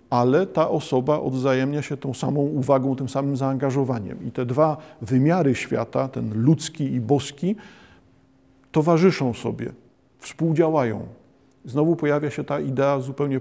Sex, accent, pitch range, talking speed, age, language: male, native, 130-150 Hz, 130 wpm, 50-69, Polish